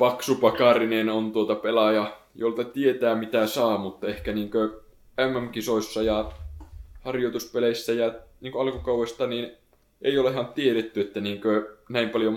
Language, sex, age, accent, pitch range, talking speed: Finnish, male, 20-39, native, 95-110 Hz, 120 wpm